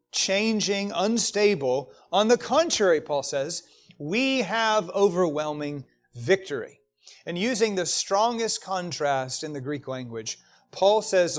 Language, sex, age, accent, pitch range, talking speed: English, male, 40-59, American, 125-190 Hz, 115 wpm